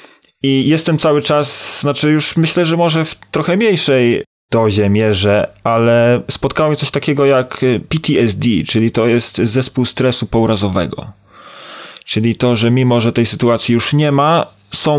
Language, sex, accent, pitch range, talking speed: Polish, male, native, 115-140 Hz, 150 wpm